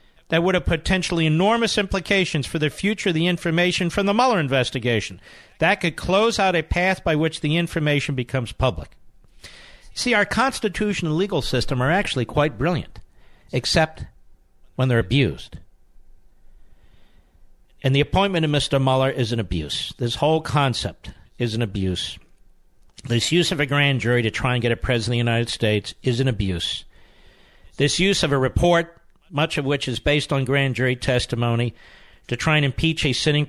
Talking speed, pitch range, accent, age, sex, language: 170 wpm, 120-180 Hz, American, 50-69, male, English